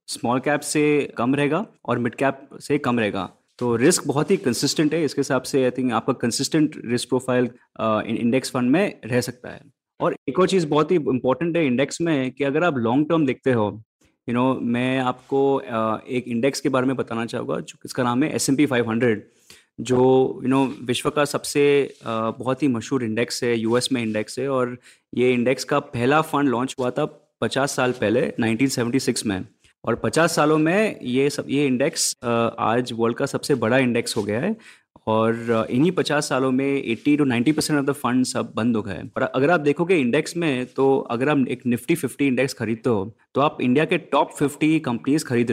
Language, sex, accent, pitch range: Hindi, male, native, 120-145 Hz